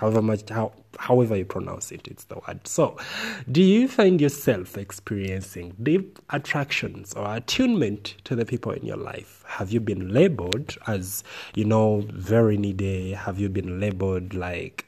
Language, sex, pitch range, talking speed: English, male, 100-135 Hz, 160 wpm